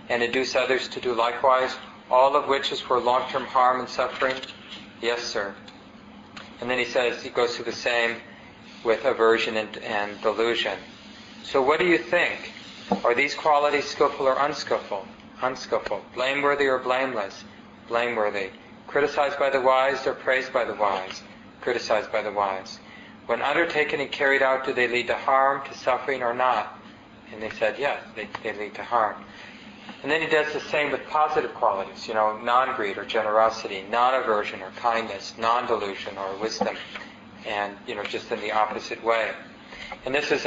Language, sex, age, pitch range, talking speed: English, male, 40-59, 110-135 Hz, 170 wpm